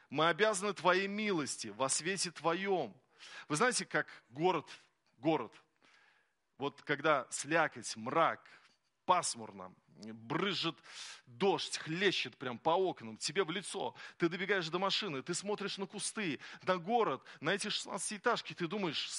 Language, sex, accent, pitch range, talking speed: Russian, male, native, 150-205 Hz, 130 wpm